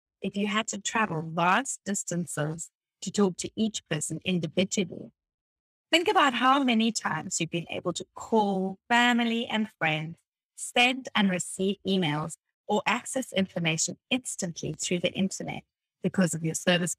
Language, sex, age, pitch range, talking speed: English, female, 30-49, 165-225 Hz, 145 wpm